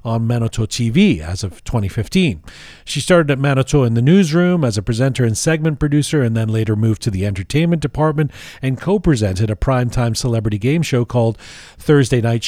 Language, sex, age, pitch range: English, male, 40-59, 115-150 Hz